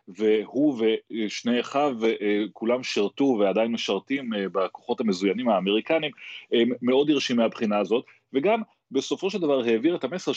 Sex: male